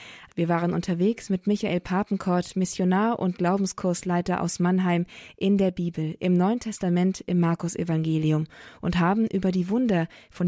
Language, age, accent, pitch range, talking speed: German, 20-39, German, 170-195 Hz, 145 wpm